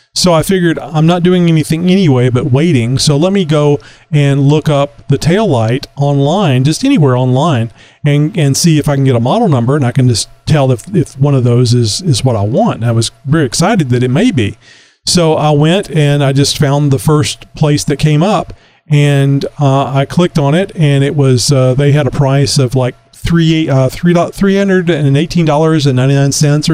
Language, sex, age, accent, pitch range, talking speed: English, male, 40-59, American, 135-165 Hz, 200 wpm